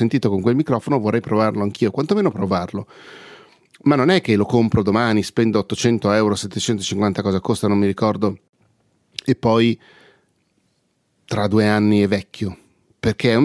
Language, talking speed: Italian, 150 wpm